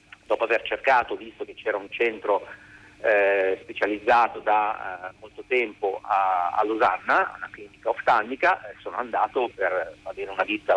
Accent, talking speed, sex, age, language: native, 150 wpm, male, 40-59, Italian